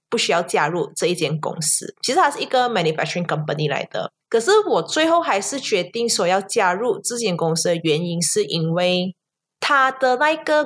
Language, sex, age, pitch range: Chinese, female, 20-39, 175-285 Hz